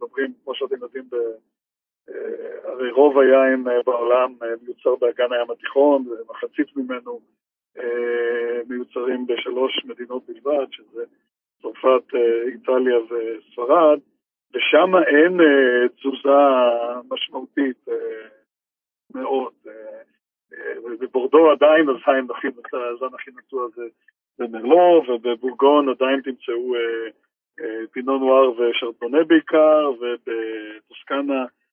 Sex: male